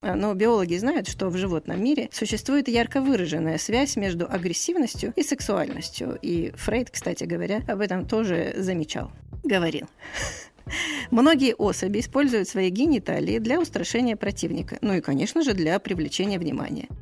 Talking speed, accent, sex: 140 wpm, native, female